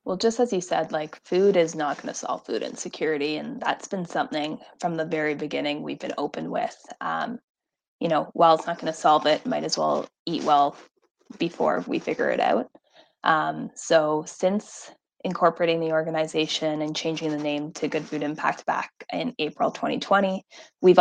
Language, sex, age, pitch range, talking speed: English, female, 10-29, 155-195 Hz, 185 wpm